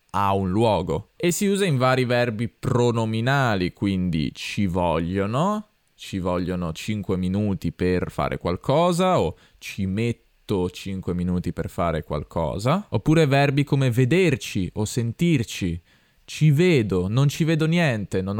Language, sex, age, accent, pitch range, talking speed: Italian, male, 20-39, native, 100-135 Hz, 135 wpm